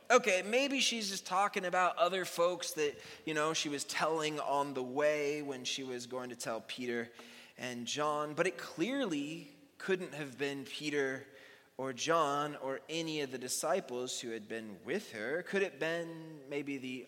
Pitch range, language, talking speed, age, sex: 130-185 Hz, English, 185 wpm, 20-39, male